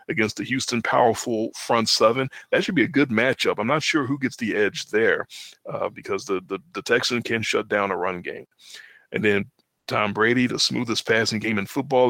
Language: English